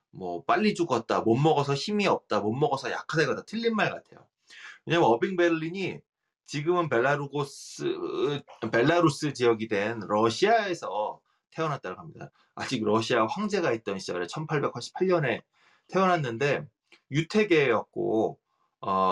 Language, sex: Korean, male